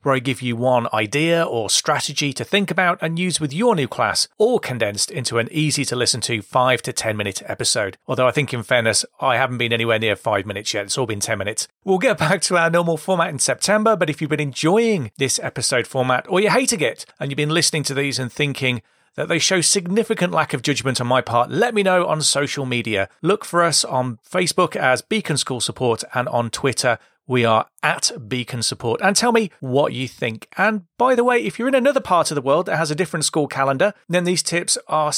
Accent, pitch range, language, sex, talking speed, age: British, 125-185 Hz, English, male, 225 wpm, 40-59